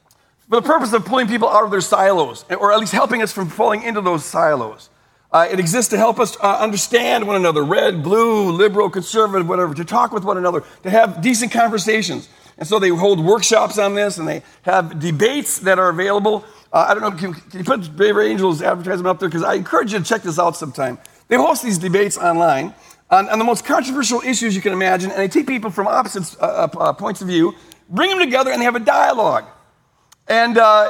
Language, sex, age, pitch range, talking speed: English, male, 50-69, 175-225 Hz, 220 wpm